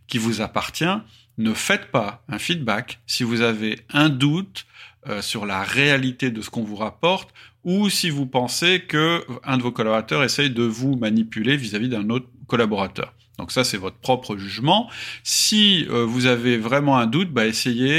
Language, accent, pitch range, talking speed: French, French, 110-140 Hz, 180 wpm